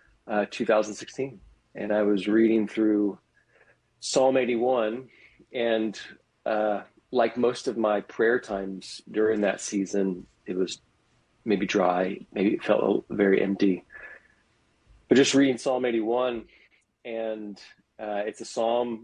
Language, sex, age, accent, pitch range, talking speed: English, male, 40-59, American, 100-115 Hz, 125 wpm